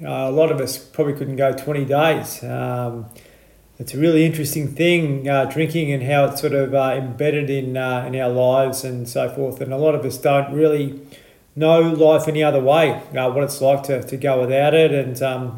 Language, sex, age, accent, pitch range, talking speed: English, male, 30-49, Australian, 130-155 Hz, 215 wpm